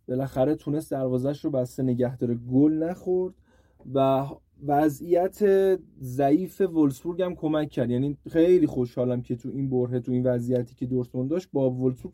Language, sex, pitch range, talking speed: Persian, male, 130-185 Hz, 155 wpm